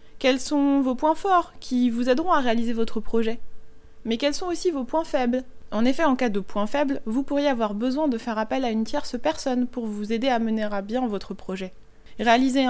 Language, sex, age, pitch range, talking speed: French, female, 20-39, 230-285 Hz, 220 wpm